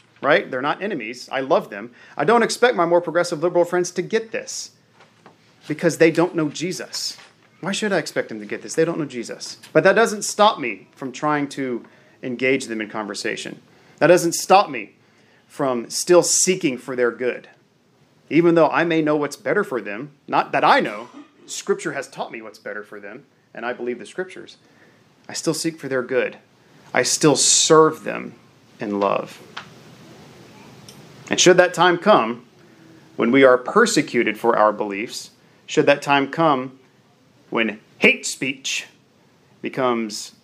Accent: American